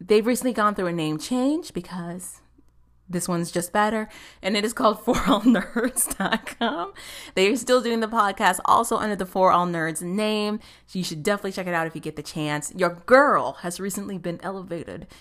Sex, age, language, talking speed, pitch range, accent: female, 30-49, English, 190 wpm, 175-230 Hz, American